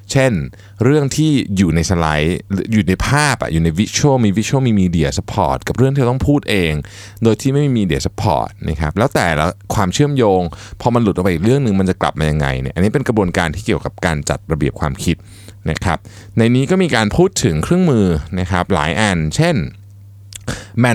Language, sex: Thai, male